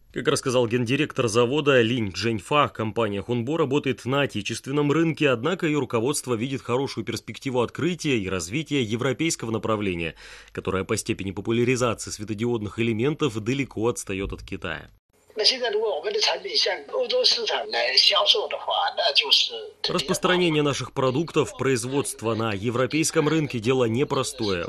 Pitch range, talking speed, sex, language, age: 115-150 Hz, 100 wpm, male, Russian, 30-49